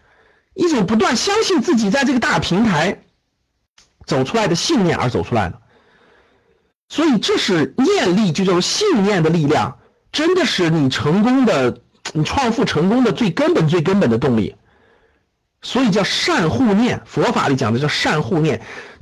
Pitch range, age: 170-275 Hz, 50-69